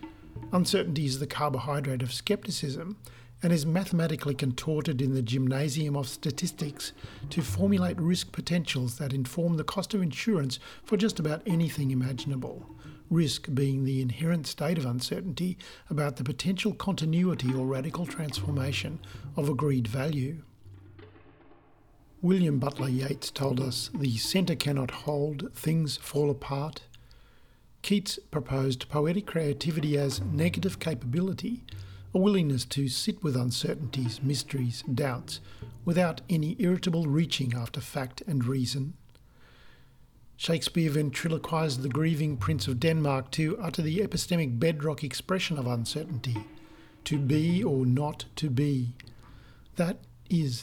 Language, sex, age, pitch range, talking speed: English, male, 50-69, 130-165 Hz, 125 wpm